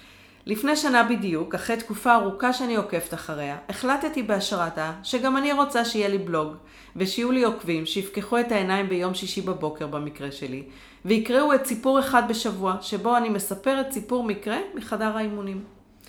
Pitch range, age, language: 170-230 Hz, 40-59, Hebrew